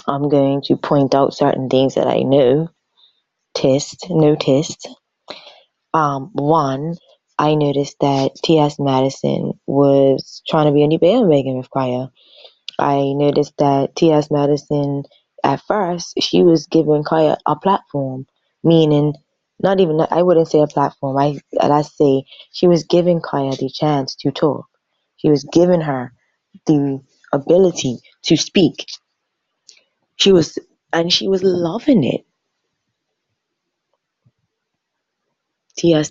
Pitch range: 140-170 Hz